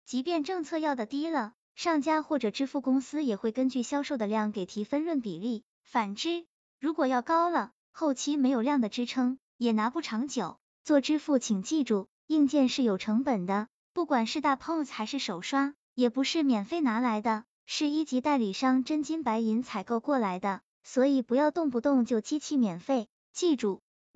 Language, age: Chinese, 20-39